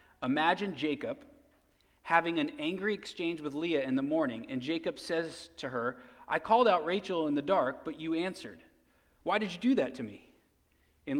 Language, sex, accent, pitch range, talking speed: English, male, American, 125-180 Hz, 180 wpm